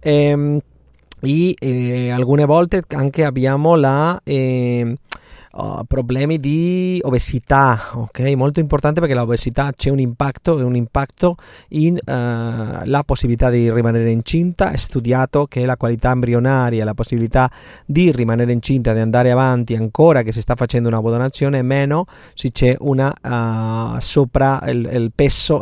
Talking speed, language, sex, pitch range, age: 145 wpm, Italian, male, 120-145 Hz, 30-49